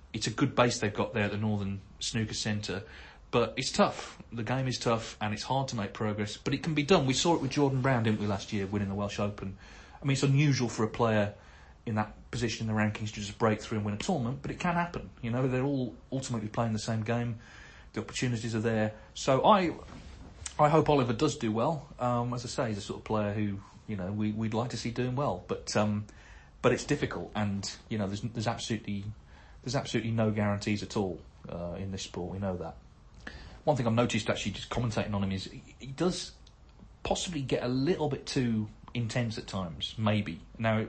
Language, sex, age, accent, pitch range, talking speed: English, male, 40-59, British, 100-120 Hz, 230 wpm